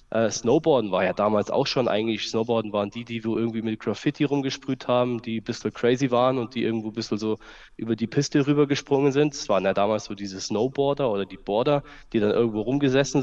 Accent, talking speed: German, 220 wpm